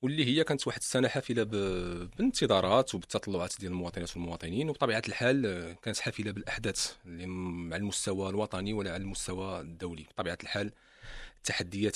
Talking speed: 135 wpm